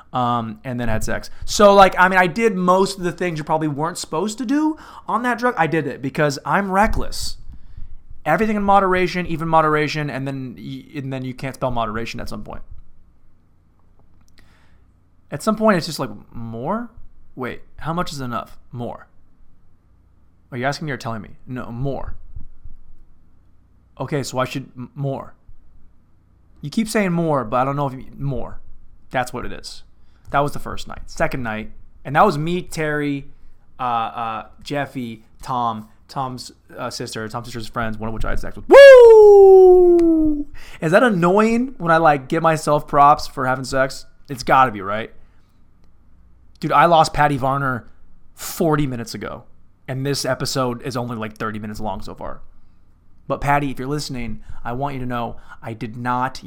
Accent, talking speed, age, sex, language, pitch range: American, 175 wpm, 30-49, male, English, 100-155 Hz